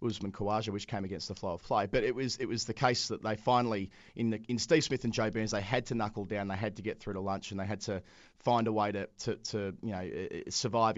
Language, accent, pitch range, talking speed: English, Australian, 100-120 Hz, 285 wpm